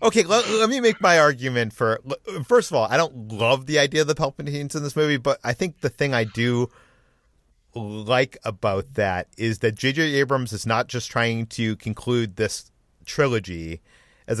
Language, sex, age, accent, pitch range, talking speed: English, male, 40-59, American, 110-140 Hz, 185 wpm